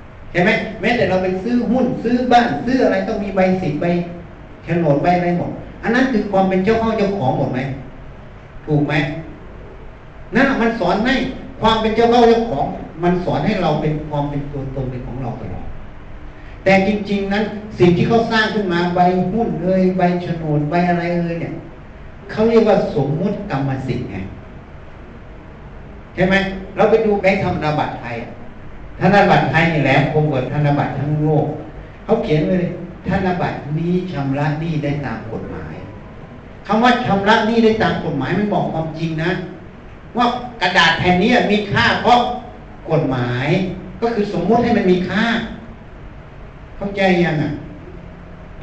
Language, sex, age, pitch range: Thai, male, 60-79, 150-205 Hz